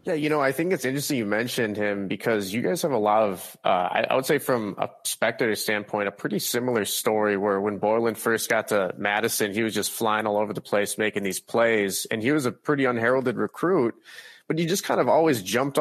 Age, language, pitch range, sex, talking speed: 30-49, English, 105-125 Hz, male, 235 wpm